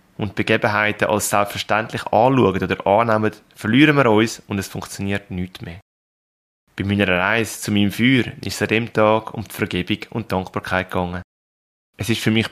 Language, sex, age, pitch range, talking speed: German, male, 20-39, 100-120 Hz, 180 wpm